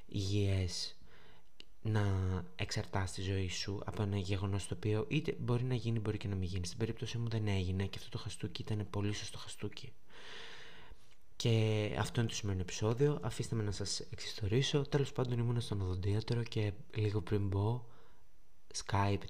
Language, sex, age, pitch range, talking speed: Greek, male, 20-39, 100-125 Hz, 170 wpm